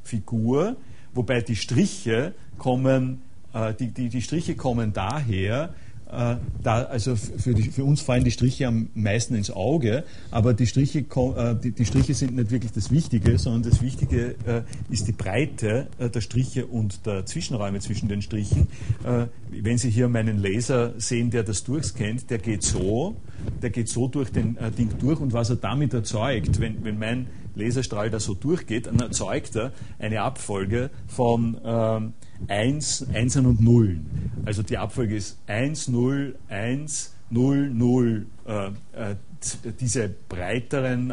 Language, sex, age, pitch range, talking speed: German, male, 50-69, 110-125 Hz, 155 wpm